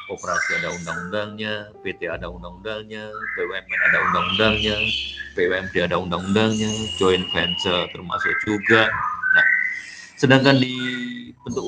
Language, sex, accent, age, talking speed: Indonesian, male, native, 50-69, 115 wpm